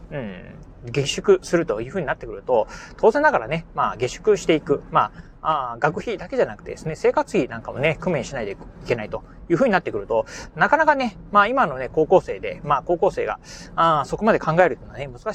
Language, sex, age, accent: Japanese, male, 30-49, native